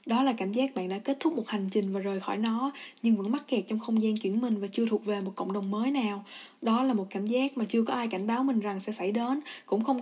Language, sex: Vietnamese, female